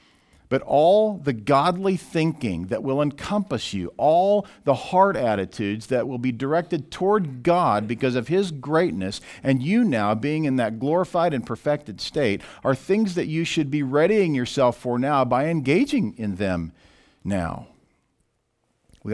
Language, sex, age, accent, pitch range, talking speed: English, male, 50-69, American, 105-155 Hz, 155 wpm